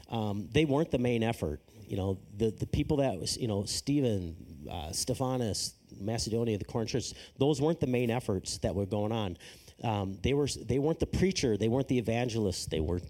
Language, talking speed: English, 205 wpm